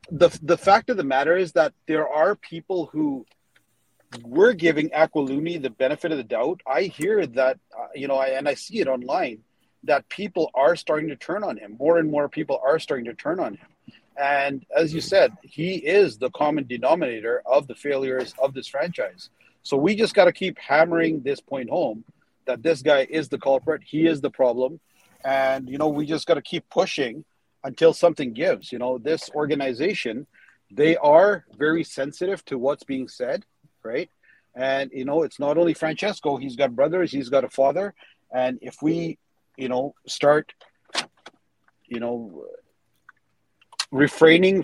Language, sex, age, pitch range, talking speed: English, male, 40-59, 135-170 Hz, 180 wpm